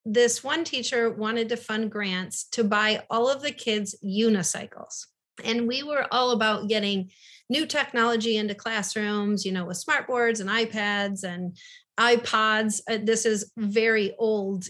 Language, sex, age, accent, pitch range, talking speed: English, female, 30-49, American, 200-235 Hz, 150 wpm